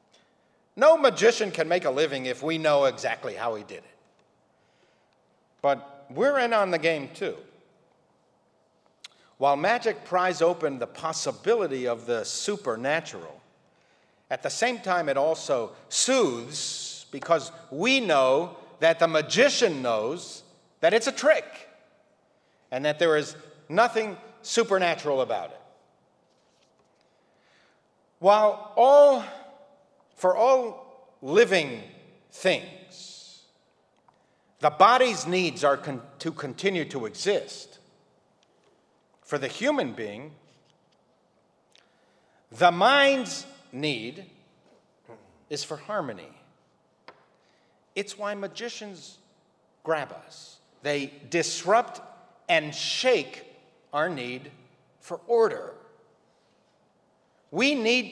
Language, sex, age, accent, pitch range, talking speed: English, male, 50-69, American, 155-245 Hz, 100 wpm